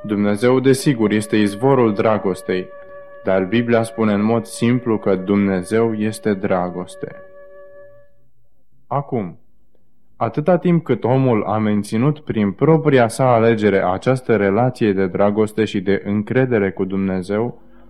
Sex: male